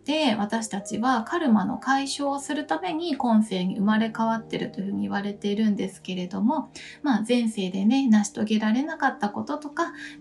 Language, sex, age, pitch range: Japanese, female, 20-39, 210-270 Hz